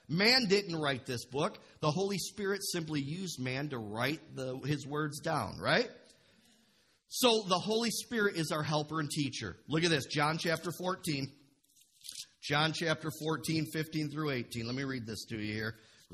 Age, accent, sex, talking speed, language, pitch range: 40-59, American, male, 165 wpm, English, 125-170 Hz